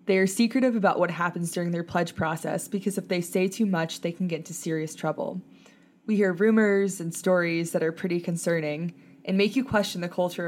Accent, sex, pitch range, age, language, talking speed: American, female, 165-195 Hz, 20-39, English, 210 wpm